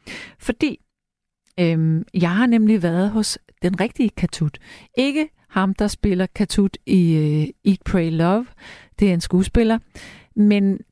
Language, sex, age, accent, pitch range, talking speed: Danish, female, 40-59, native, 180-225 Hz, 125 wpm